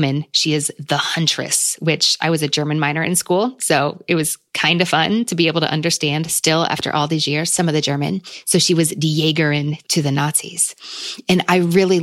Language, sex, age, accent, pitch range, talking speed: English, female, 20-39, American, 145-175 Hz, 215 wpm